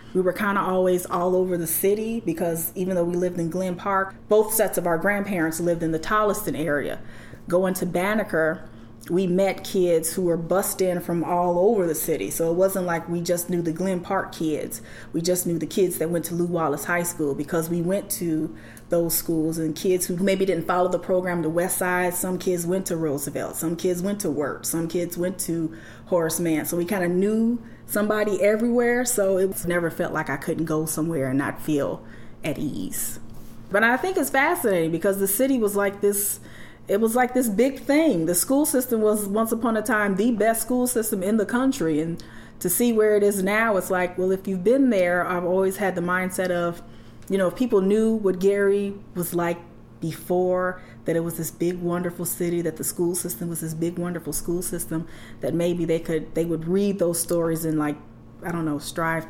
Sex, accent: female, American